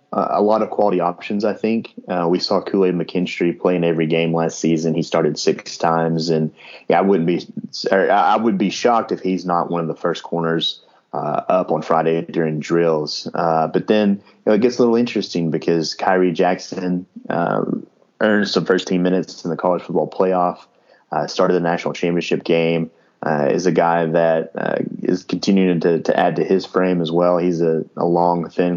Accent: American